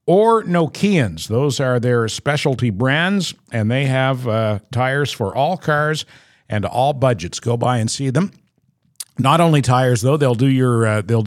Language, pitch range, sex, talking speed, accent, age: English, 115-145 Hz, male, 170 wpm, American, 50-69